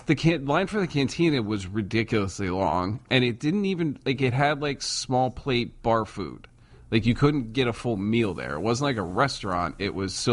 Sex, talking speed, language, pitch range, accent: male, 210 wpm, English, 110-135 Hz, American